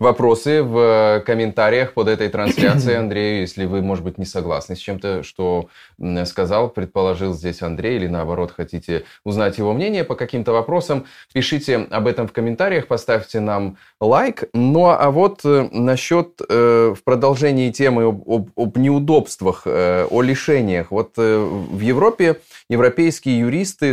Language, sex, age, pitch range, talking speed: Russian, male, 20-39, 95-125 Hz, 135 wpm